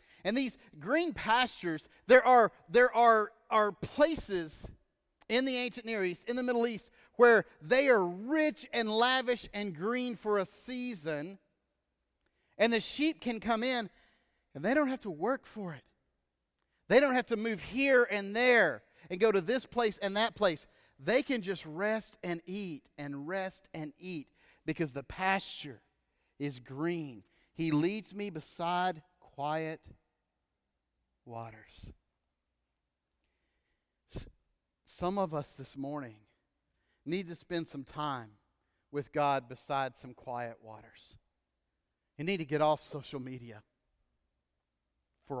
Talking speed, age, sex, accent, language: 135 wpm, 40-59, male, American, English